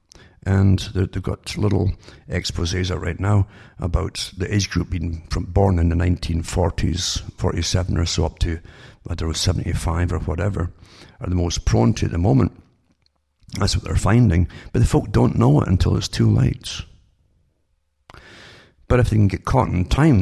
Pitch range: 85-105 Hz